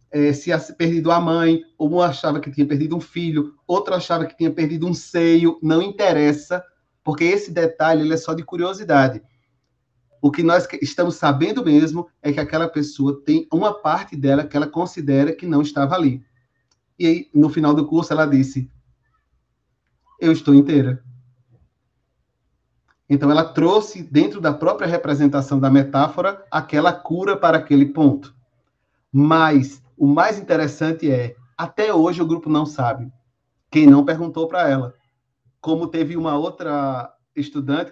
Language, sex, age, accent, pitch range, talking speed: Portuguese, male, 30-49, Brazilian, 135-165 Hz, 155 wpm